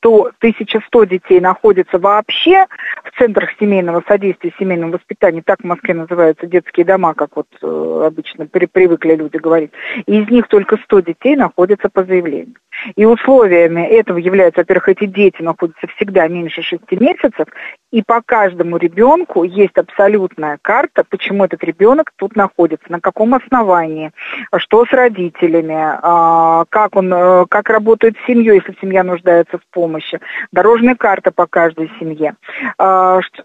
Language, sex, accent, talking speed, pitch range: Russian, female, native, 140 wpm, 175-215 Hz